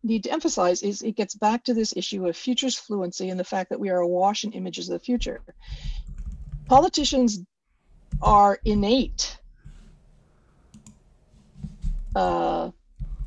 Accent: American